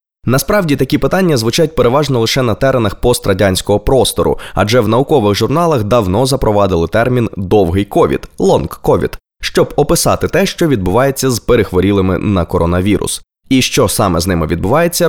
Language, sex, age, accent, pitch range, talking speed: Ukrainian, male, 20-39, native, 95-140 Hz, 145 wpm